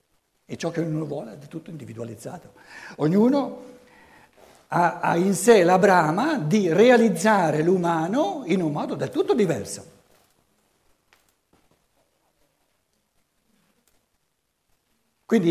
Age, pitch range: 60-79, 160-230 Hz